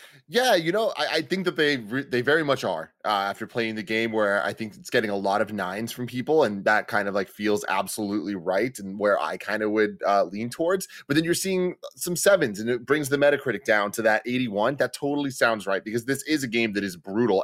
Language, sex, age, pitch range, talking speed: English, male, 30-49, 100-140 Hz, 250 wpm